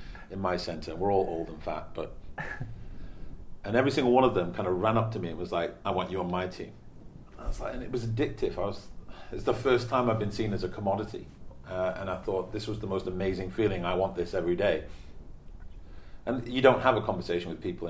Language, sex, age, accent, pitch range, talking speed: English, male, 40-59, British, 90-115 Hz, 250 wpm